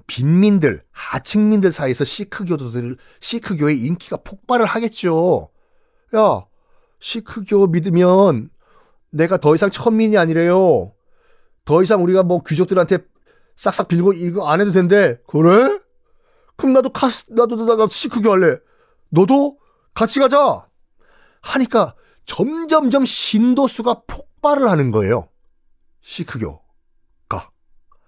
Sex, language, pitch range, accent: male, Korean, 155-245 Hz, native